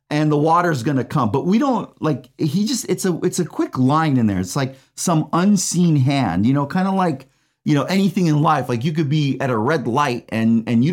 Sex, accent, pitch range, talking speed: male, American, 130-160 Hz, 245 wpm